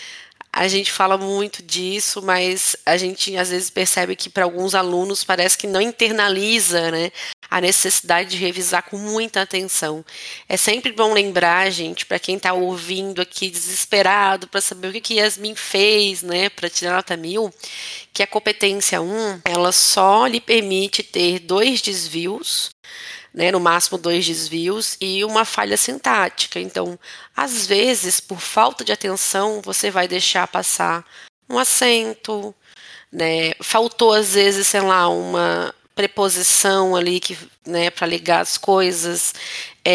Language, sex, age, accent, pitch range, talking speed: Portuguese, female, 20-39, Brazilian, 175-205 Hz, 145 wpm